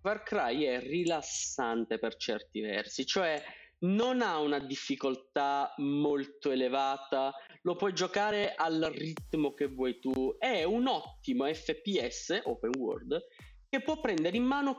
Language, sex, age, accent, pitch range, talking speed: Italian, male, 30-49, native, 135-210 Hz, 135 wpm